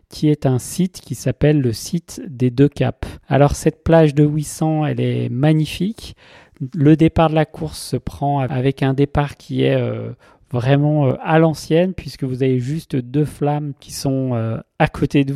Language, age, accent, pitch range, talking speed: French, 40-59, French, 130-150 Hz, 190 wpm